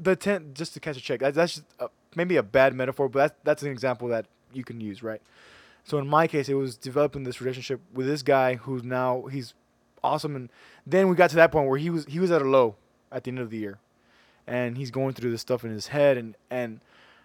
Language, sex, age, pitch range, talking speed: English, male, 20-39, 125-155 Hz, 250 wpm